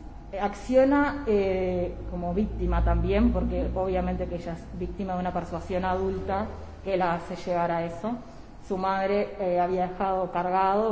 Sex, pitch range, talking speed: female, 180-215 Hz, 150 wpm